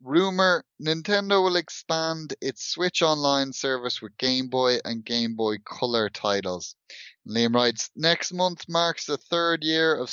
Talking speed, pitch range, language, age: 150 wpm, 120-155 Hz, English, 30-49